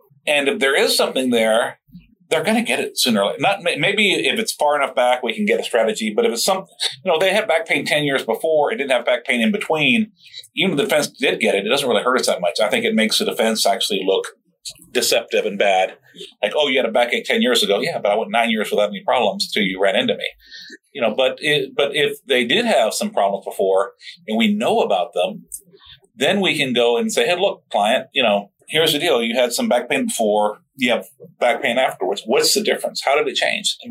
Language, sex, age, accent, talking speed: English, male, 40-59, American, 255 wpm